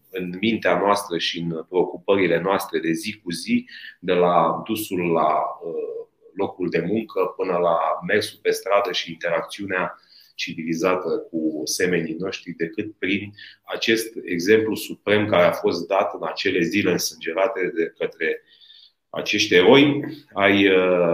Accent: native